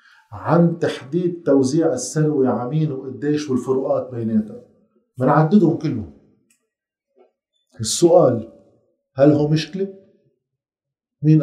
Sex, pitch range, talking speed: male, 130-165 Hz, 85 wpm